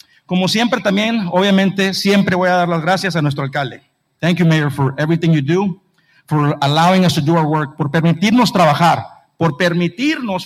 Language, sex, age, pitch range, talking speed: English, male, 50-69, 155-195 Hz, 185 wpm